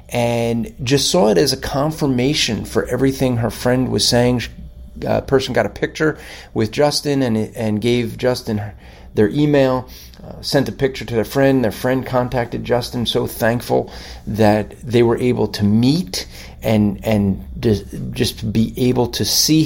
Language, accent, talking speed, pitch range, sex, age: English, American, 170 wpm, 105-130 Hz, male, 40-59